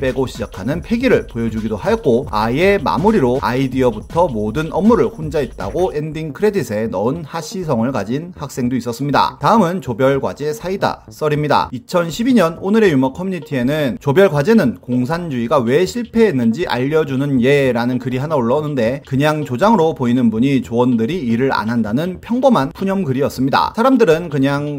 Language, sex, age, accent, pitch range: Korean, male, 30-49, native, 125-195 Hz